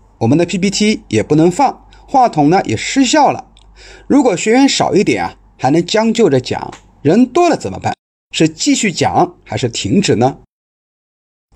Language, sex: Chinese, male